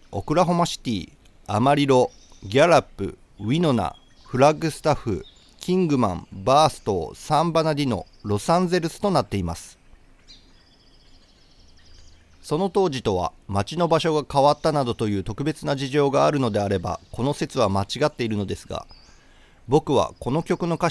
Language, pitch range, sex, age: Japanese, 105-155 Hz, male, 40-59